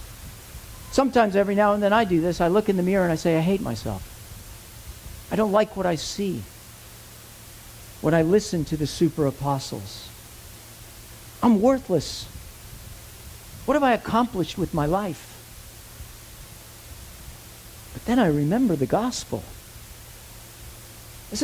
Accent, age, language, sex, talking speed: American, 50-69, English, male, 135 wpm